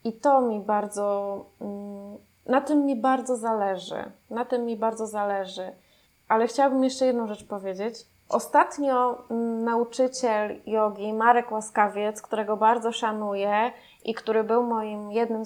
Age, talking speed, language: 20-39, 130 wpm, Polish